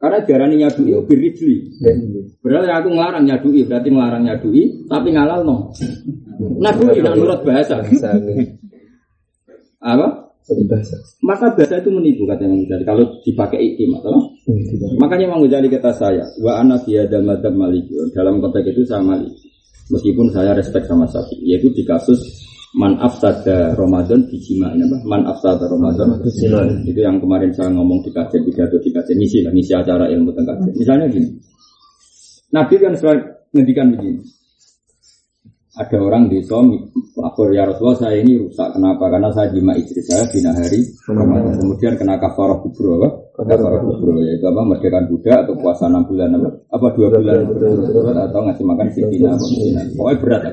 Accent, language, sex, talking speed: native, Indonesian, male, 150 wpm